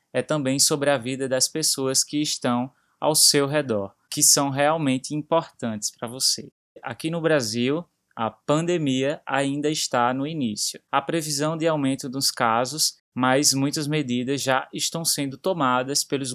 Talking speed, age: 150 wpm, 20-39